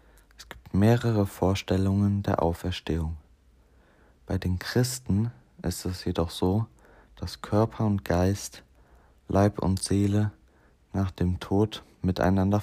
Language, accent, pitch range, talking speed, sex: German, German, 85-105 Hz, 105 wpm, male